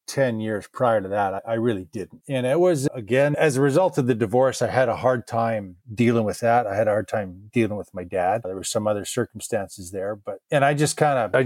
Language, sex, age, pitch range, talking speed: English, male, 30-49, 110-140 Hz, 250 wpm